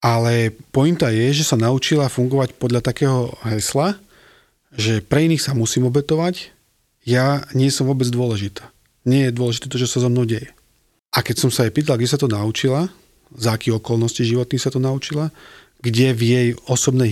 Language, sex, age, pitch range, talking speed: Slovak, male, 40-59, 115-135 Hz, 180 wpm